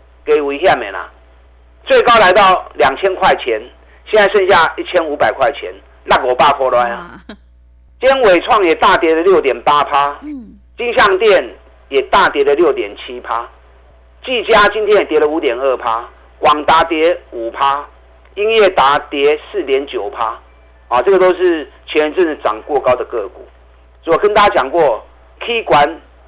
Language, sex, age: Chinese, male, 50-69